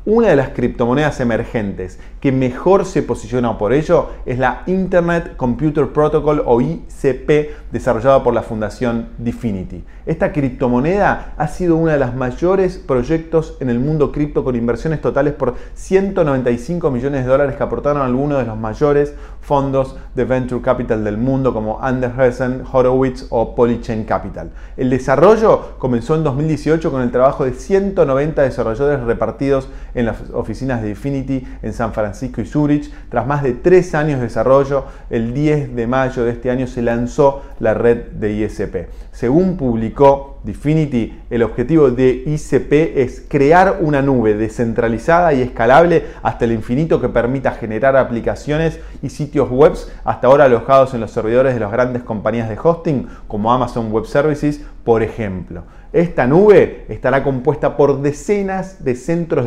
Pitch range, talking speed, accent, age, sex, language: 120-145 Hz, 155 wpm, Argentinian, 20-39, male, Spanish